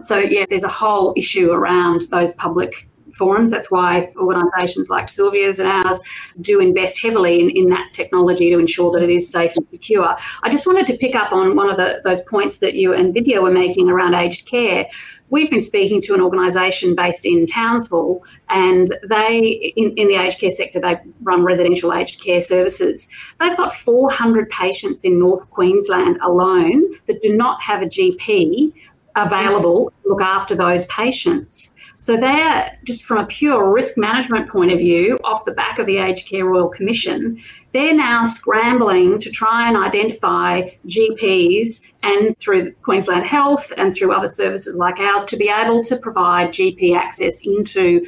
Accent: Australian